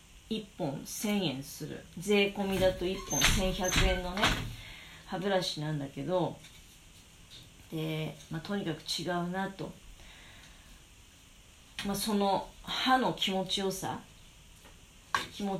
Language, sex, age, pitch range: Japanese, female, 40-59, 155-235 Hz